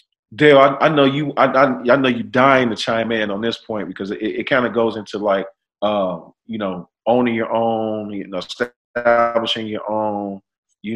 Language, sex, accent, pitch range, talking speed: English, male, American, 100-120 Hz, 195 wpm